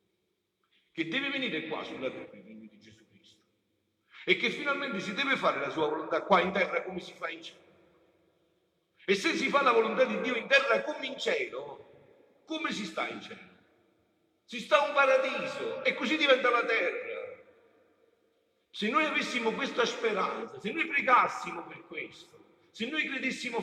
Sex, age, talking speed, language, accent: male, 50-69, 175 wpm, Italian, native